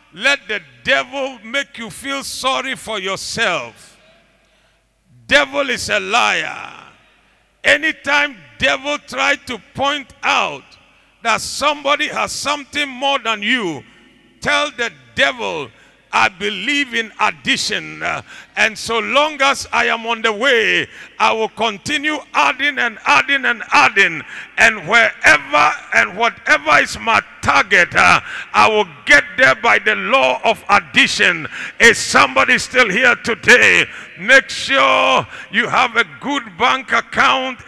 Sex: male